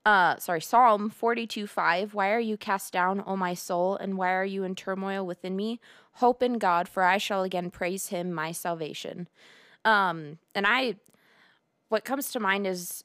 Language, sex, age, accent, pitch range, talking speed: English, female, 20-39, American, 175-215 Hz, 185 wpm